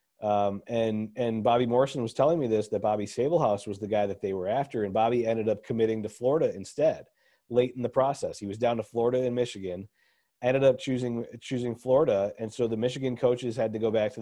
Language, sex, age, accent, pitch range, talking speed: English, male, 30-49, American, 110-130 Hz, 225 wpm